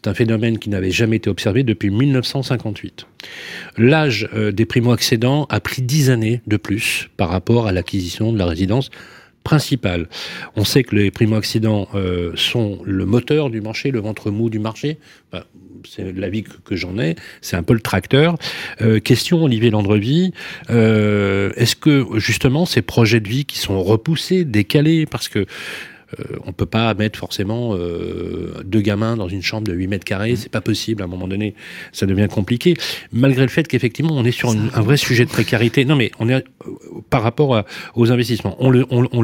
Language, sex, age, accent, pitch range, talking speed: French, male, 40-59, French, 100-130 Hz, 190 wpm